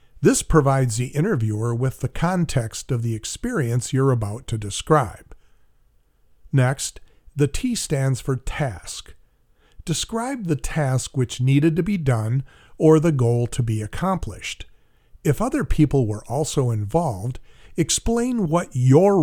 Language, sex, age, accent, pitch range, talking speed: English, male, 50-69, American, 115-160 Hz, 135 wpm